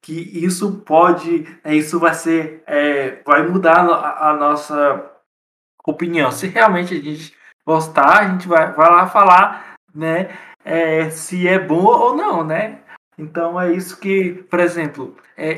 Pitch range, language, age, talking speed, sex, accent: 150-175 Hz, Portuguese, 20-39, 150 wpm, male, Brazilian